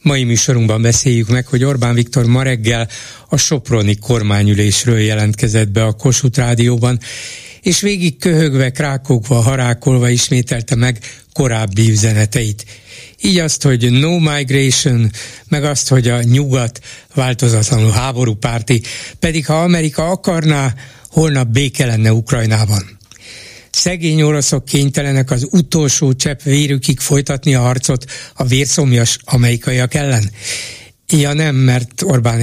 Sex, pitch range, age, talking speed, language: male, 115-140 Hz, 60-79, 120 wpm, Hungarian